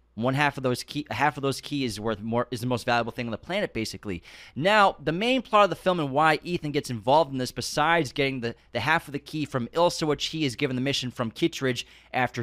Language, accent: English, American